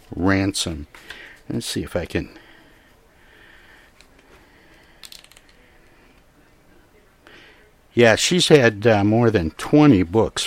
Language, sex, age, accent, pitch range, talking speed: English, male, 60-79, American, 85-105 Hz, 80 wpm